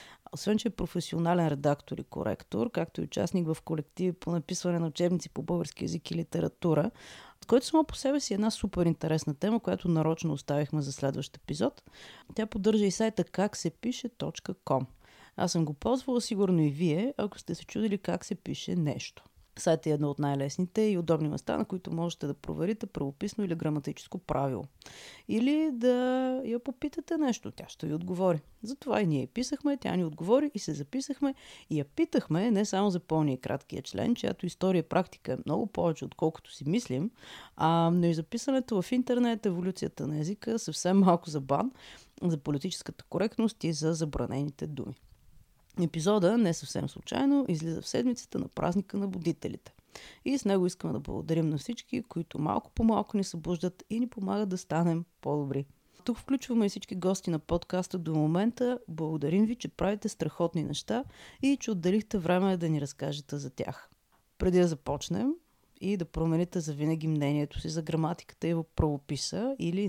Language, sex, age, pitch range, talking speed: Bulgarian, female, 30-49, 160-220 Hz, 175 wpm